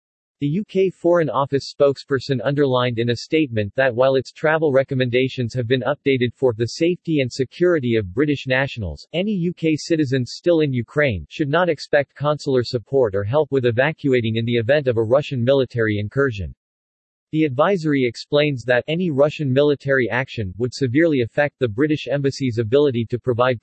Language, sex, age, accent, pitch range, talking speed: English, male, 40-59, American, 120-150 Hz, 165 wpm